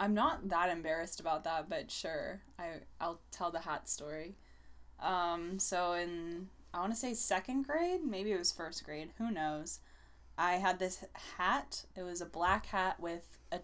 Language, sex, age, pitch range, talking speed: English, female, 10-29, 155-185 Hz, 185 wpm